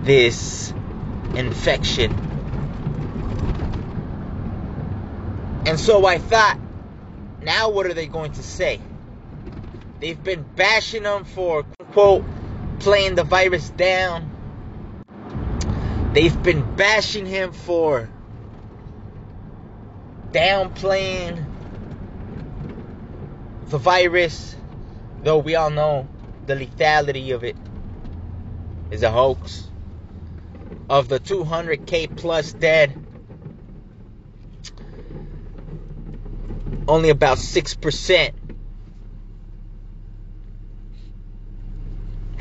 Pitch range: 100-155 Hz